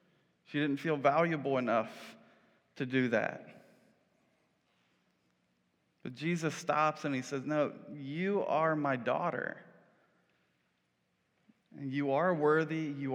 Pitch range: 140-175 Hz